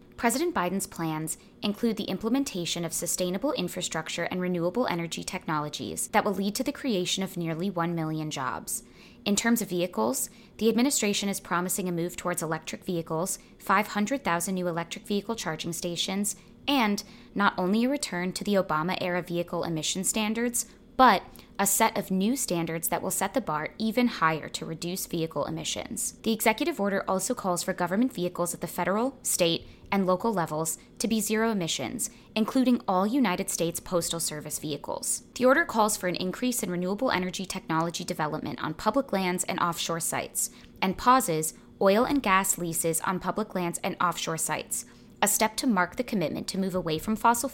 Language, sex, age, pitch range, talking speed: English, female, 20-39, 170-220 Hz, 175 wpm